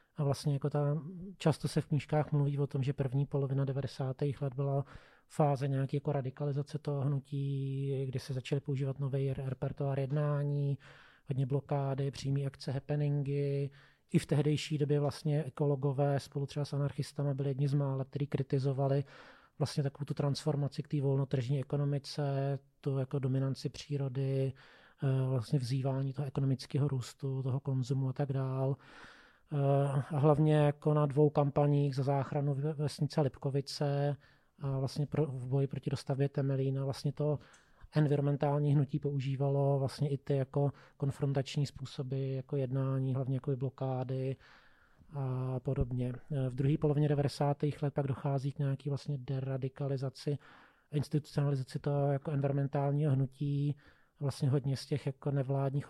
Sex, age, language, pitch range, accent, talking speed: male, 30-49, Czech, 135-145 Hz, native, 140 wpm